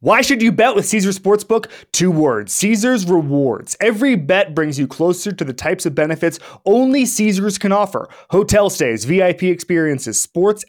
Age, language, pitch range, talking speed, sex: 30-49, English, 135-180 Hz, 170 wpm, male